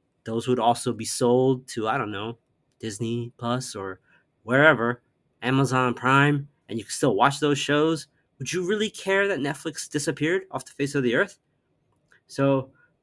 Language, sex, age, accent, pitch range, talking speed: English, male, 30-49, American, 115-140 Hz, 165 wpm